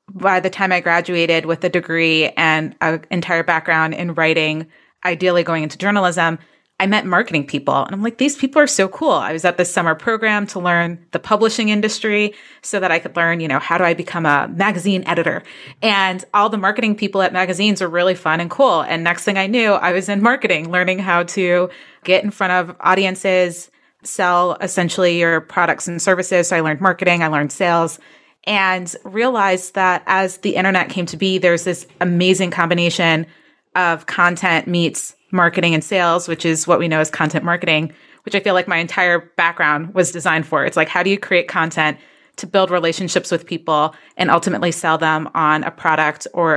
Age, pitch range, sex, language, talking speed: 30-49, 165-190 Hz, female, English, 200 wpm